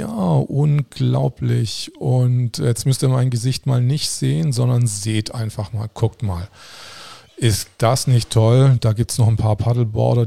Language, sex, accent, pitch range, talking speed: German, male, German, 105-120 Hz, 165 wpm